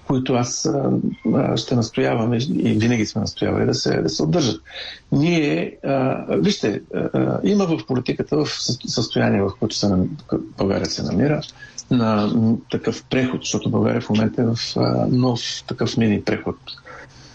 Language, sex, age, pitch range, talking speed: Bulgarian, male, 50-69, 95-135 Hz, 140 wpm